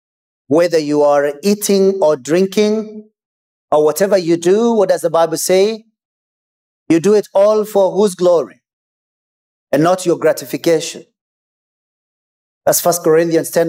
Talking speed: 130 wpm